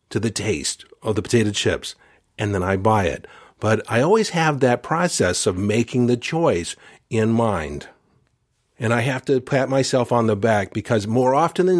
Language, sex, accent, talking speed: English, male, American, 190 wpm